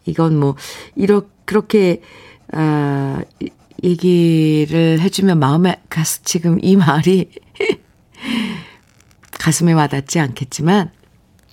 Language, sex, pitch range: Korean, female, 155-215 Hz